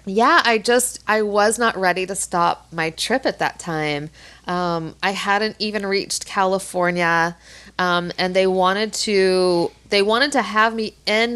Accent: American